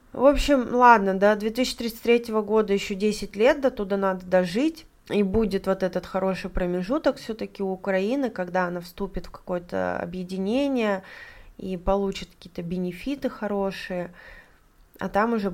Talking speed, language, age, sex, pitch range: 145 wpm, Russian, 20-39, female, 185-220 Hz